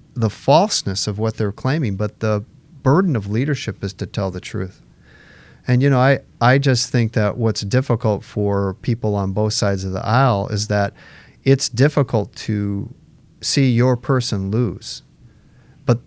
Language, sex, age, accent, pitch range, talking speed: English, male, 40-59, American, 100-130 Hz, 165 wpm